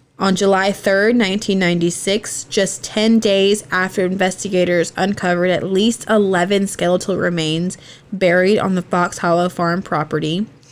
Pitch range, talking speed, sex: 170-205 Hz, 125 wpm, female